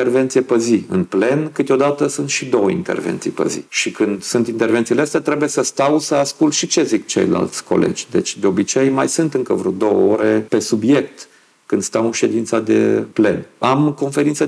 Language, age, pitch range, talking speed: Romanian, 50-69, 110-140 Hz, 185 wpm